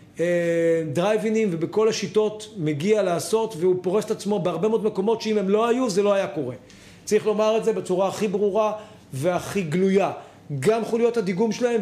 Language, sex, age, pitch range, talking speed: Hebrew, male, 40-59, 180-220 Hz, 170 wpm